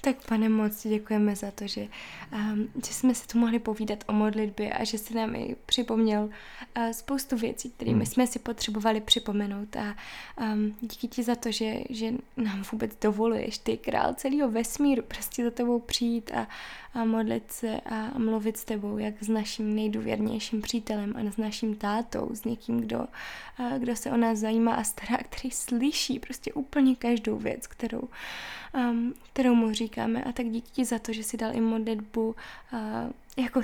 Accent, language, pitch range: Czech, English, 220-245 Hz